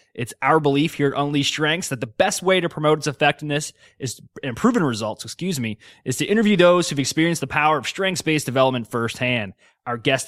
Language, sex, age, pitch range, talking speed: English, male, 20-39, 135-170 Hz, 205 wpm